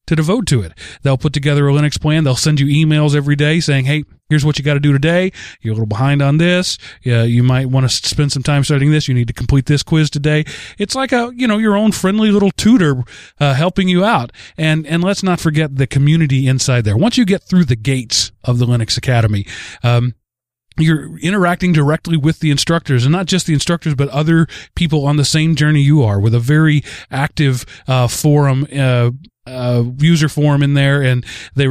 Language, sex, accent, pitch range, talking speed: English, male, American, 130-160 Hz, 220 wpm